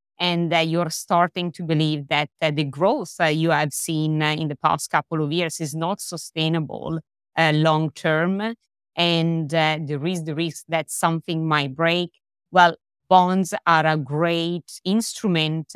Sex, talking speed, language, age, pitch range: female, 165 wpm, English, 20-39, 155-175 Hz